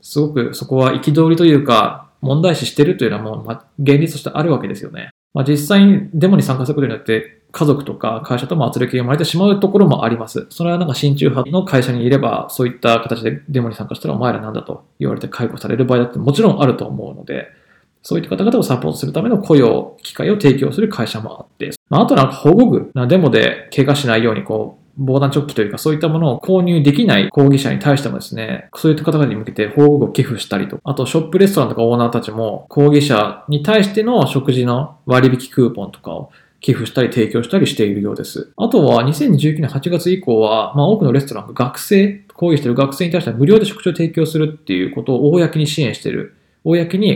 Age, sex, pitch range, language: 20-39, male, 120-165 Hz, Japanese